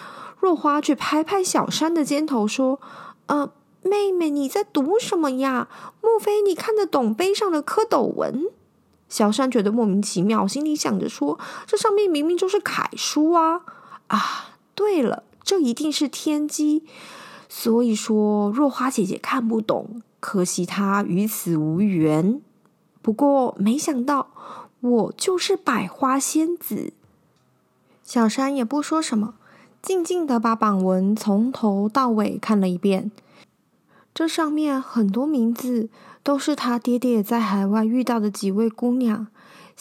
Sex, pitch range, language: female, 210-295 Hz, Chinese